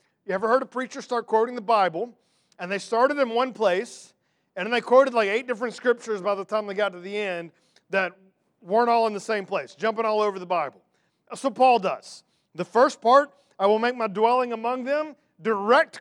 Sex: male